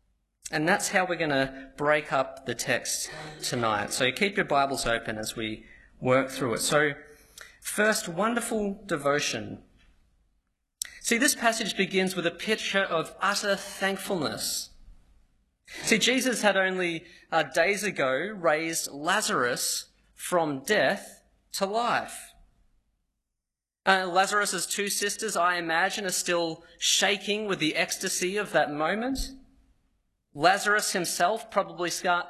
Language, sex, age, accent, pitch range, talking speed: English, male, 30-49, Australian, 155-215 Hz, 125 wpm